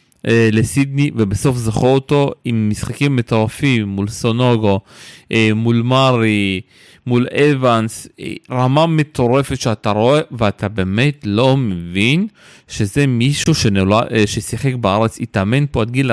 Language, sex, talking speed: Hebrew, male, 110 wpm